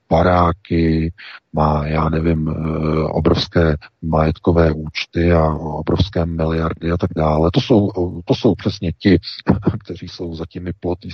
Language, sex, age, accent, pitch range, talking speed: Czech, male, 40-59, native, 80-100 Hz, 130 wpm